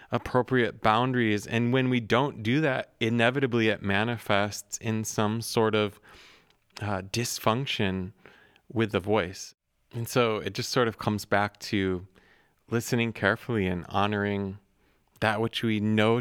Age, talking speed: 30-49, 135 wpm